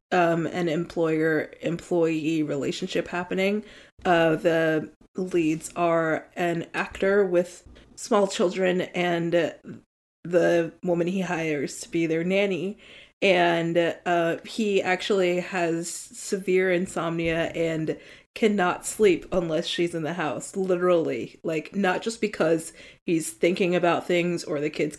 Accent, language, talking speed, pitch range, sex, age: American, English, 120 wpm, 165-190 Hz, female, 20-39